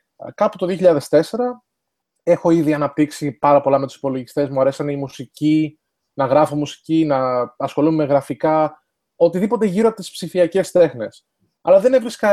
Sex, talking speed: male, 150 wpm